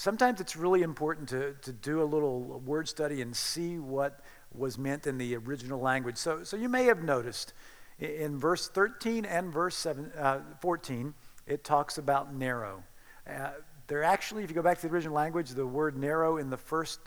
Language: English